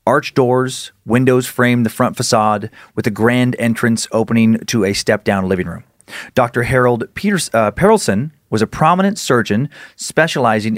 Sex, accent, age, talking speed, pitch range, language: male, American, 30-49, 145 wpm, 110-140 Hz, English